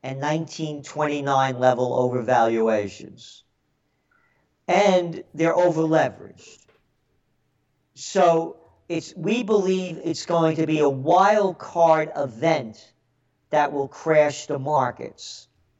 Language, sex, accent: English, male, American